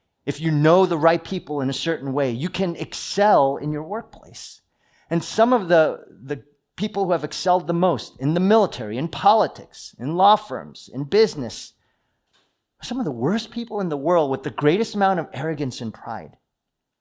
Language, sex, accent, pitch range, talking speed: English, male, American, 120-175 Hz, 185 wpm